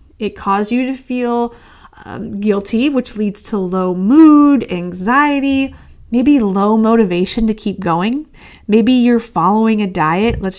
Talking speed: 140 wpm